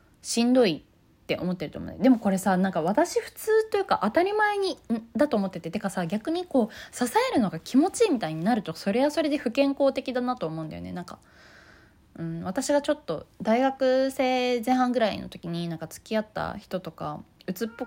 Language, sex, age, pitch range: Japanese, female, 20-39, 180-300 Hz